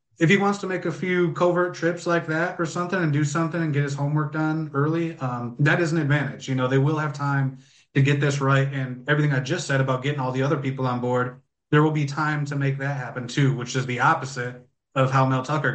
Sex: male